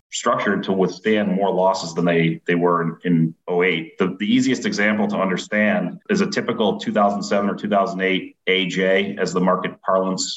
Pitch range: 95-115 Hz